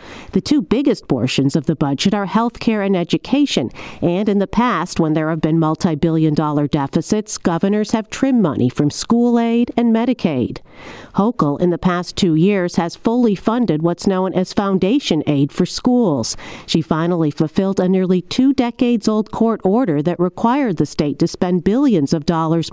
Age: 50-69